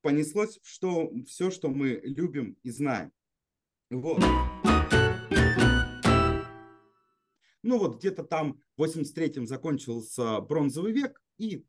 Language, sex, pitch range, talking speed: Russian, male, 105-160 Hz, 90 wpm